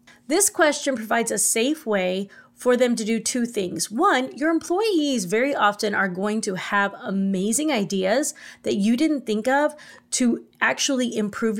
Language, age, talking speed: English, 30-49, 160 wpm